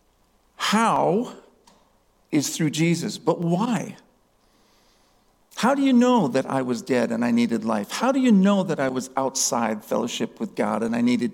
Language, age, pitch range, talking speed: English, 50-69, 140-220 Hz, 170 wpm